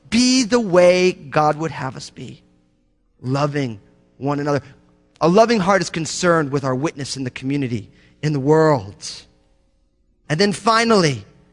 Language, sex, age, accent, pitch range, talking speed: English, male, 30-49, American, 140-225 Hz, 145 wpm